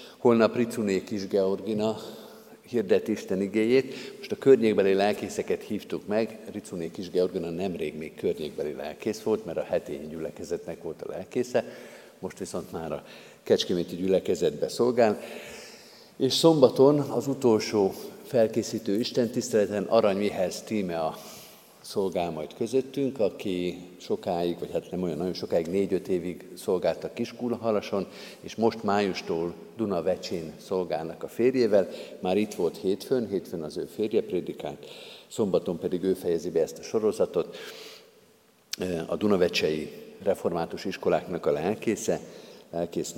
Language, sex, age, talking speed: Hungarian, male, 50-69, 120 wpm